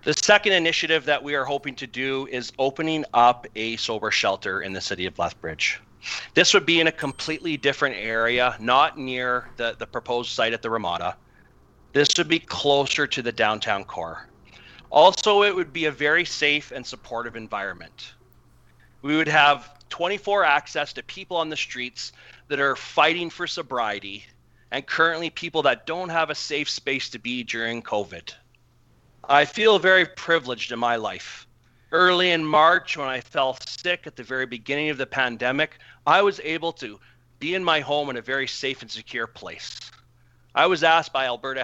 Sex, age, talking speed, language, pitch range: male, 40-59, 180 wpm, English, 120-160 Hz